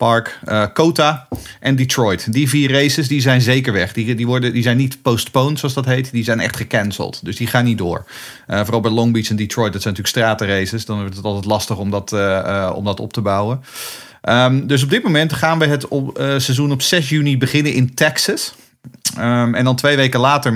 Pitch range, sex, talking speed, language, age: 115-145 Hz, male, 205 wpm, Dutch, 40-59